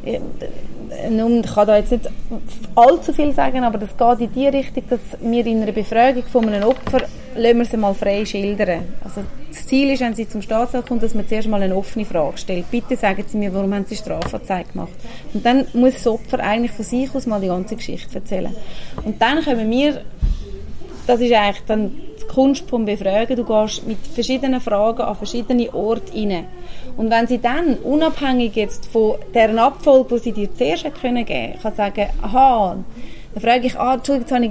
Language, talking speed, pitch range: German, 195 wpm, 215-255 Hz